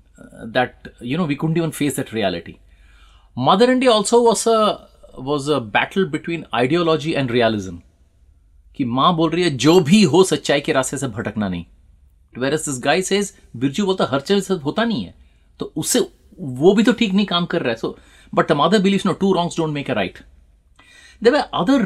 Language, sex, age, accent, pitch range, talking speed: Hindi, male, 30-49, native, 110-160 Hz, 200 wpm